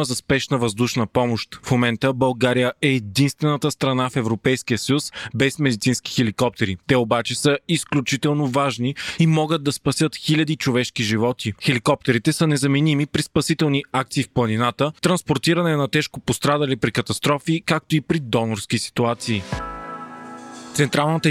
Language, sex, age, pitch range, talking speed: Bulgarian, male, 20-39, 120-155 Hz, 135 wpm